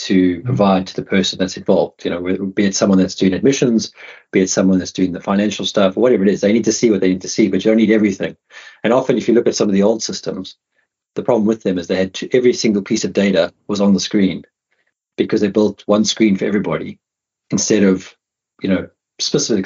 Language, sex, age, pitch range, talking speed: English, male, 30-49, 95-115 Hz, 245 wpm